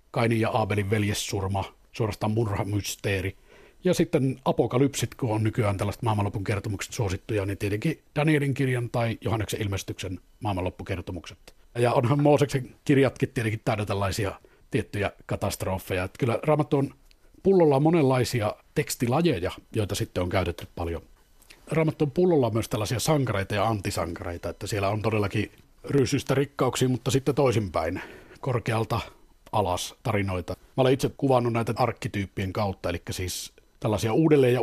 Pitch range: 100-135 Hz